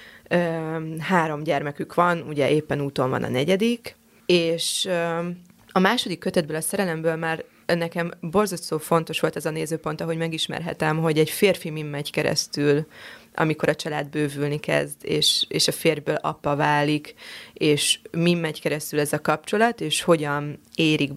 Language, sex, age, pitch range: Hungarian, female, 20-39, 150-175 Hz